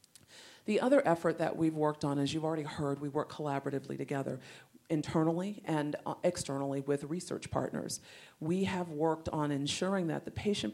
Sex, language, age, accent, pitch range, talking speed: female, English, 40-59, American, 140-170 Hz, 160 wpm